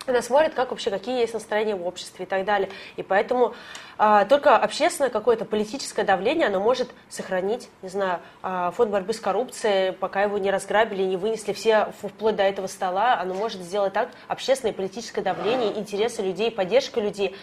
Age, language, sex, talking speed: 20-39, Russian, female, 180 wpm